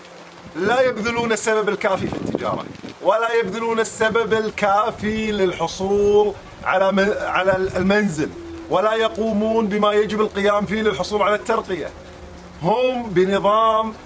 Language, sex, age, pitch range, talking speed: Arabic, male, 40-59, 190-230 Hz, 100 wpm